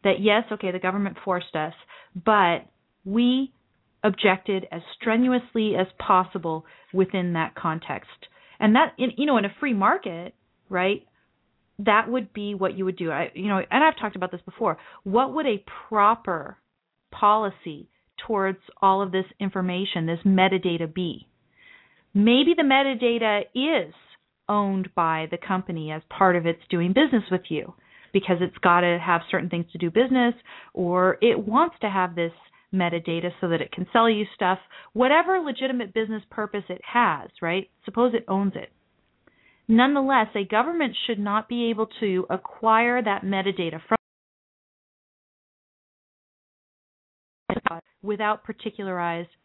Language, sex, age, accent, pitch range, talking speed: English, female, 40-59, American, 180-230 Hz, 150 wpm